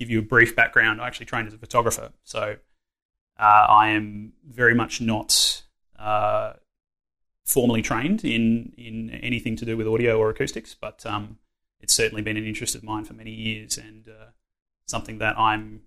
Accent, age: Australian, 20-39